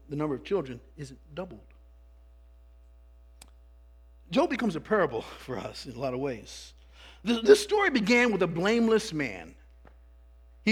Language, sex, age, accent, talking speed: English, male, 50-69, American, 140 wpm